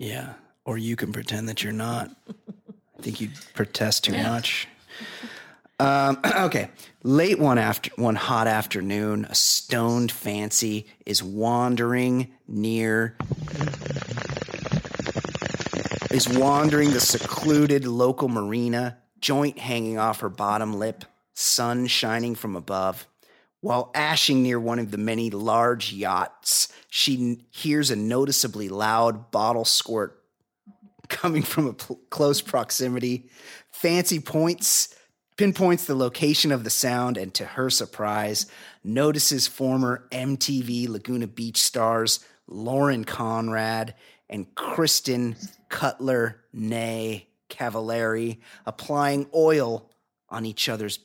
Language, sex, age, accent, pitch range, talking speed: English, male, 30-49, American, 110-140 Hz, 110 wpm